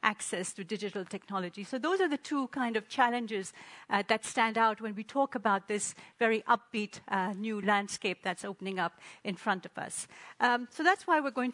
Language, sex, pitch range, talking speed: English, female, 205-250 Hz, 205 wpm